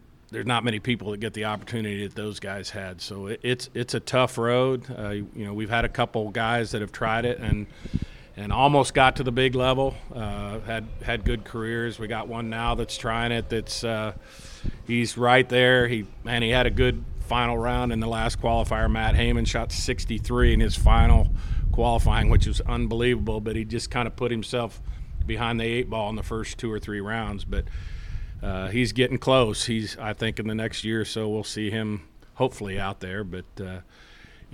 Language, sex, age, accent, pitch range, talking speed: English, male, 40-59, American, 105-120 Hz, 205 wpm